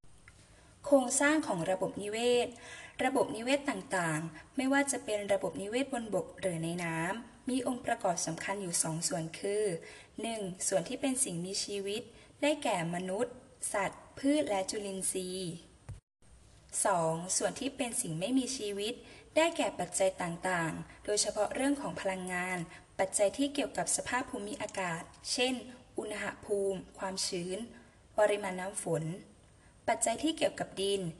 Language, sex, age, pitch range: Thai, female, 10-29, 185-255 Hz